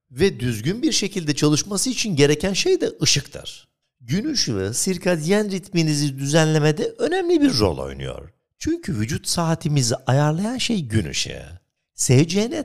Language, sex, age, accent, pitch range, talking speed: Turkish, male, 60-79, native, 120-190 Hz, 130 wpm